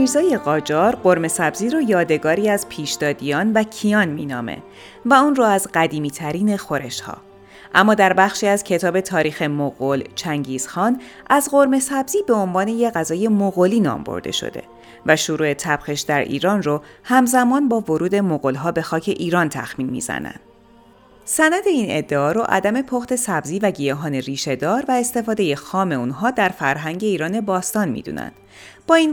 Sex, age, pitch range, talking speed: female, 30-49, 145-235 Hz, 155 wpm